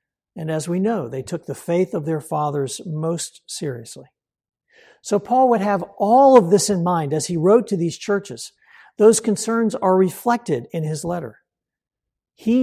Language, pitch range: English, 155-215 Hz